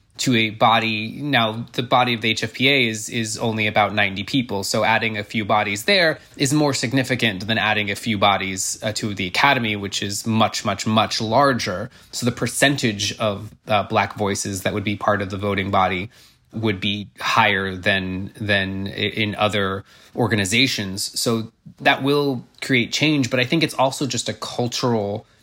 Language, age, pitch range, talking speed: English, 20-39, 105-125 Hz, 175 wpm